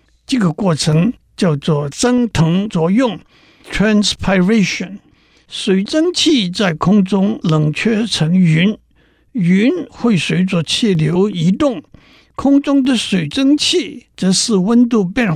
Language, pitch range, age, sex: Chinese, 175-235 Hz, 60-79, male